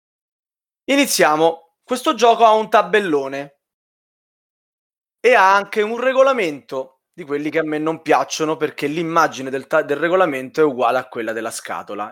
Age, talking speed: 20-39, 150 wpm